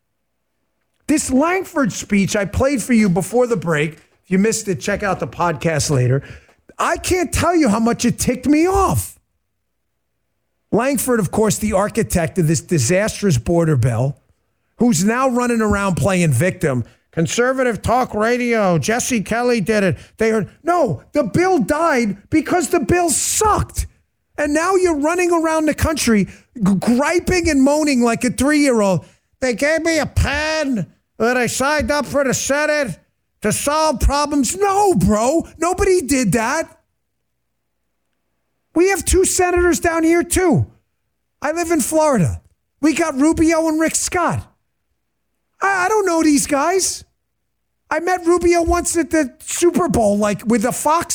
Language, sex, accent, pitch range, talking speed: English, male, American, 205-325 Hz, 155 wpm